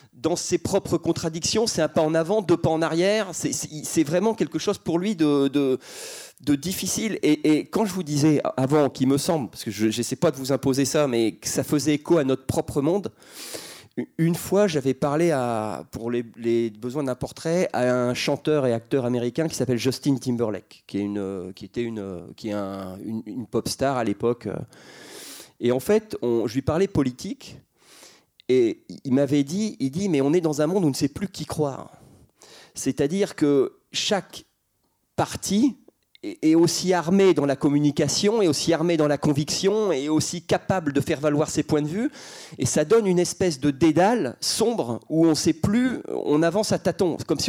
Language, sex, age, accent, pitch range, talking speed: French, male, 30-49, French, 140-185 Hz, 205 wpm